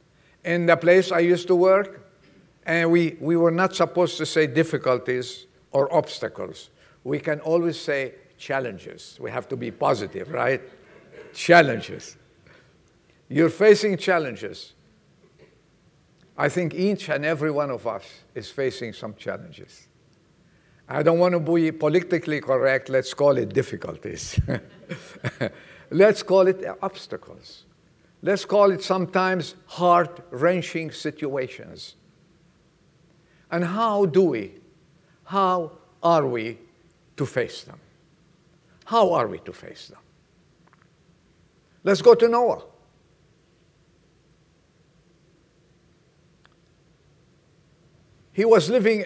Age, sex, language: 50-69, male, English